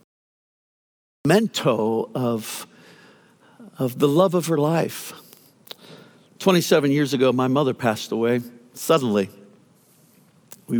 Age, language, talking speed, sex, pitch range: 60-79, English, 95 wpm, male, 120-155 Hz